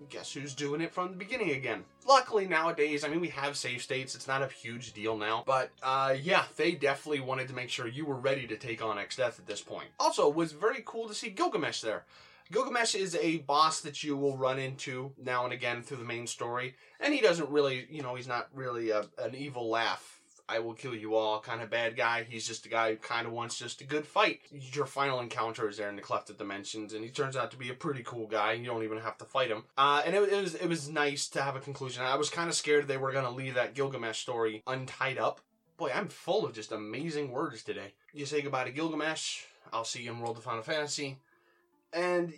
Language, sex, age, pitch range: English, male, 20-39, 120-165 Hz